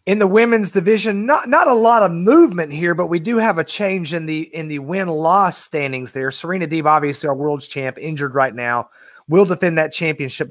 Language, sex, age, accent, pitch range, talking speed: English, male, 30-49, American, 140-180 Hz, 210 wpm